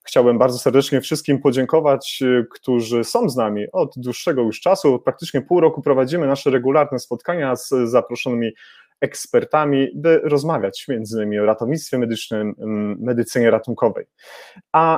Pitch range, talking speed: 120-150 Hz, 130 wpm